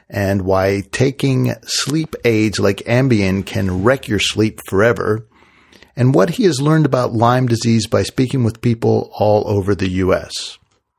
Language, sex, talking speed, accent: English, male, 155 wpm, American